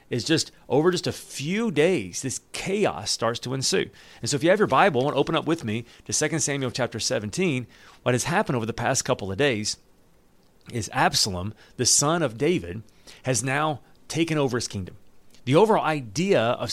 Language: English